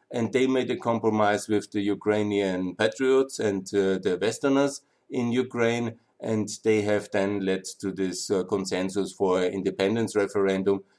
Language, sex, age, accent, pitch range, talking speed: German, male, 50-69, German, 95-110 Hz, 145 wpm